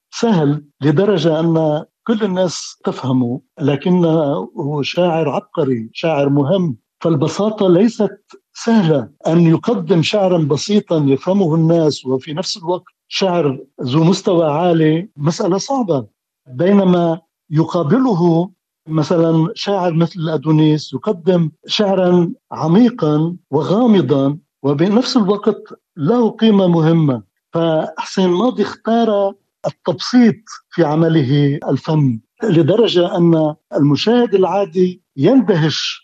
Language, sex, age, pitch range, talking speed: Arabic, male, 60-79, 150-195 Hz, 95 wpm